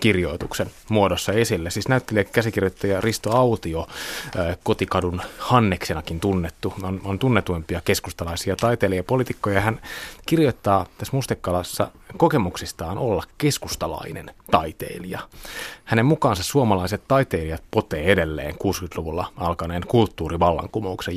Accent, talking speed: native, 95 wpm